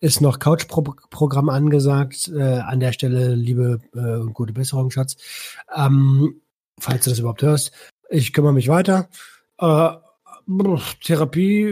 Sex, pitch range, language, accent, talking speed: male, 130-160 Hz, German, German, 135 wpm